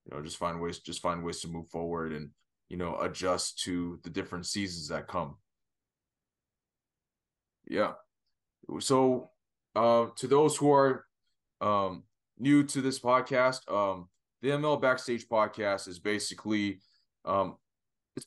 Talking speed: 140 wpm